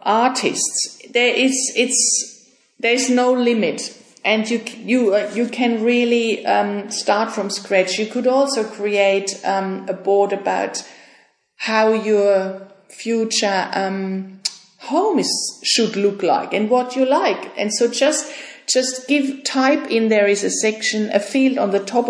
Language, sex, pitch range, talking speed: English, female, 200-250 Hz, 150 wpm